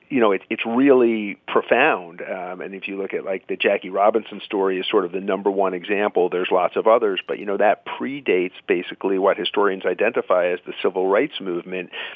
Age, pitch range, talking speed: 50-69, 95-120 Hz, 200 wpm